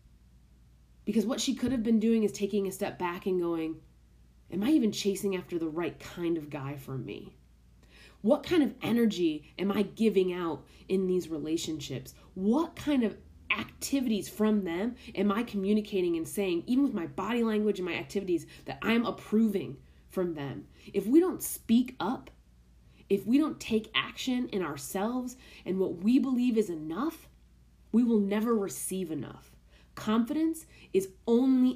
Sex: female